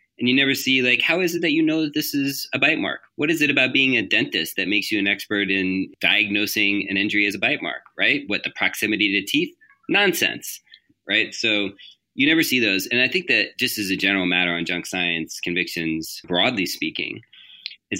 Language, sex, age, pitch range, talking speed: English, male, 30-49, 85-105 Hz, 220 wpm